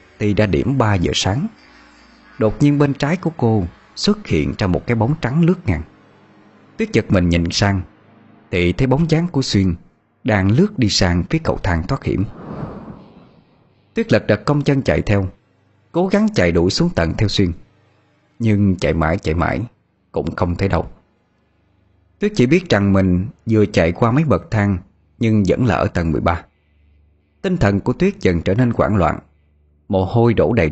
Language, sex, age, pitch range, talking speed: Vietnamese, male, 20-39, 85-125 Hz, 185 wpm